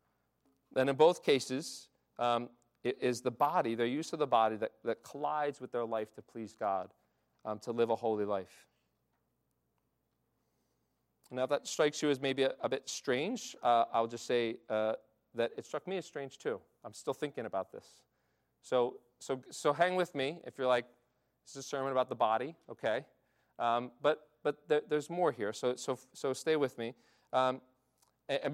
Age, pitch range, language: 40-59, 120-150 Hz, English